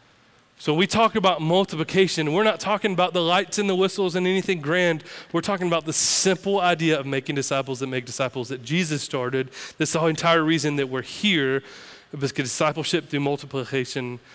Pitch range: 135-175 Hz